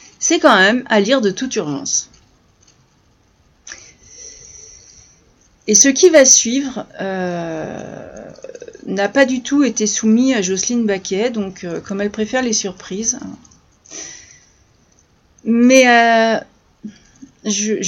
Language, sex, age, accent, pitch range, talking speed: French, female, 40-59, French, 200-255 Hz, 110 wpm